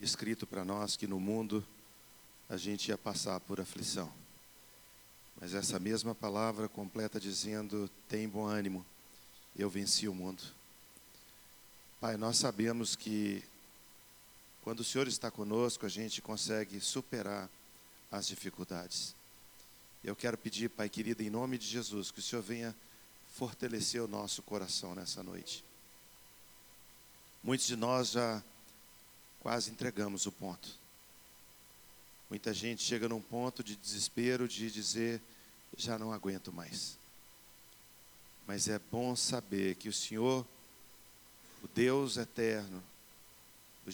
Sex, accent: male, Brazilian